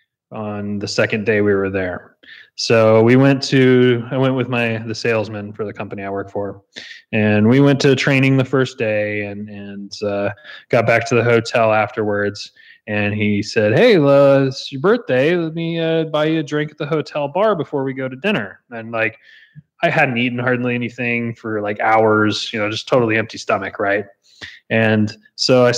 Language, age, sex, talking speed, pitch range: English, 20-39, male, 195 wpm, 105-150 Hz